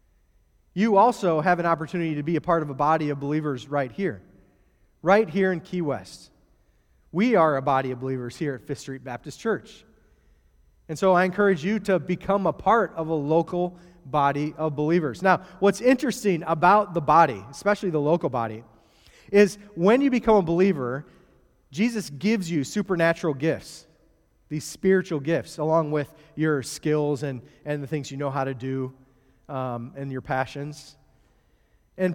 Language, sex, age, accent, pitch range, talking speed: English, male, 30-49, American, 145-185 Hz, 170 wpm